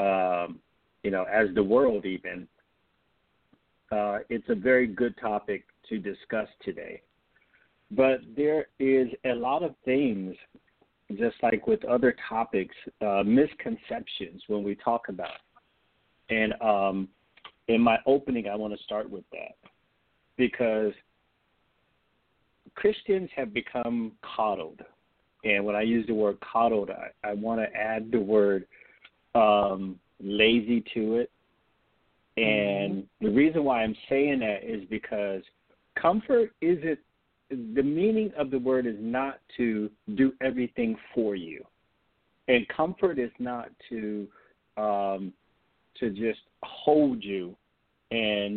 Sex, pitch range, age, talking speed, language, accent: male, 105-130 Hz, 50-69, 130 wpm, English, American